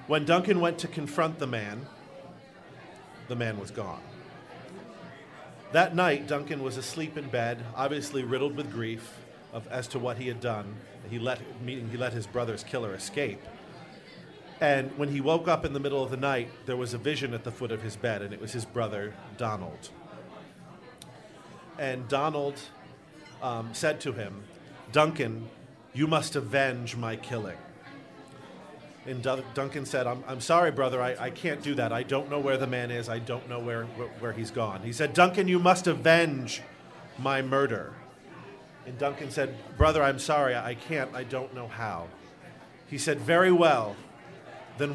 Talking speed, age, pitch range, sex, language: 170 wpm, 40-59, 120-145 Hz, male, English